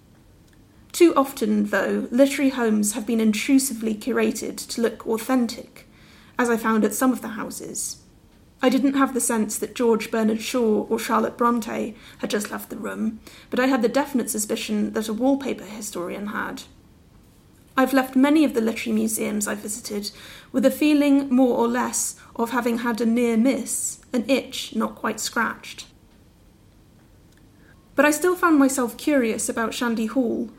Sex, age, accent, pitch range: female, 30-49, British, 225-260 Hz